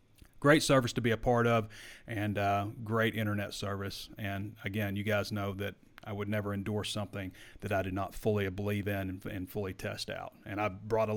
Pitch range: 105-125 Hz